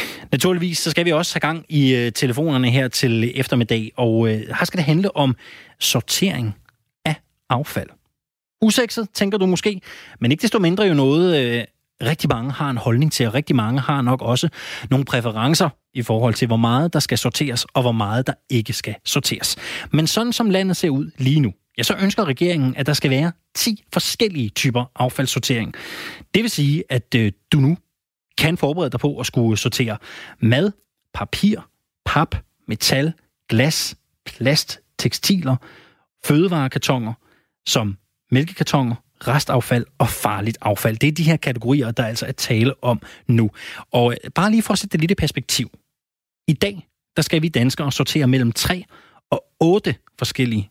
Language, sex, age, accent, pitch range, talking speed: Danish, male, 20-39, native, 120-160 Hz, 170 wpm